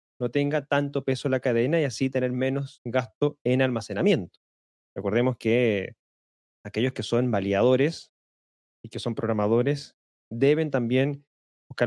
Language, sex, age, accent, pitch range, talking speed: Spanish, male, 20-39, Argentinian, 110-155 Hz, 135 wpm